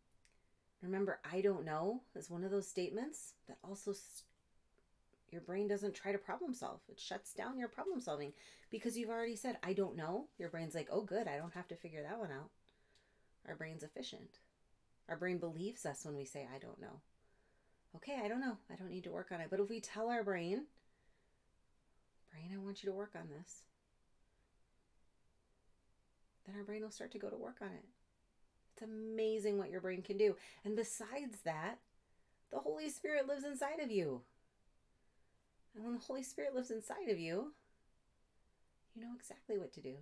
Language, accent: English, American